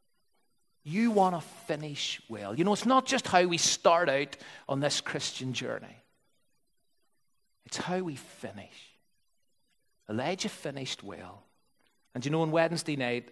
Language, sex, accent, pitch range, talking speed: English, male, British, 130-215 Hz, 140 wpm